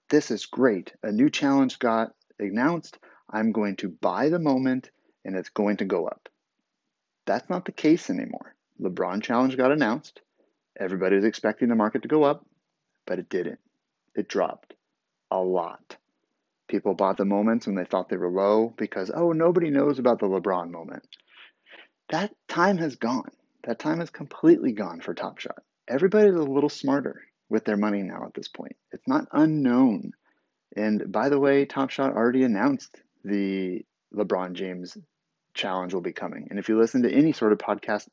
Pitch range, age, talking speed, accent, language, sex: 100-145 Hz, 30-49, 175 wpm, American, English, male